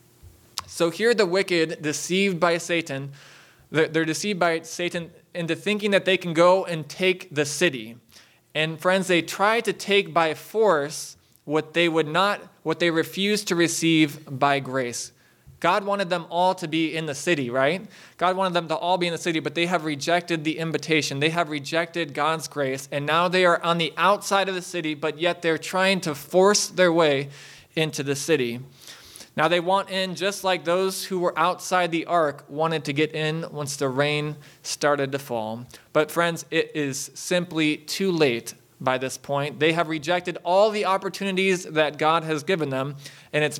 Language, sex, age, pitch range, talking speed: English, male, 20-39, 145-175 Hz, 185 wpm